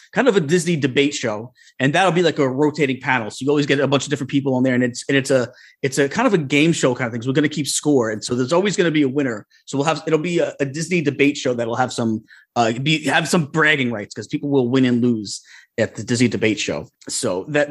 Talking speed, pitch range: 290 wpm, 125-150 Hz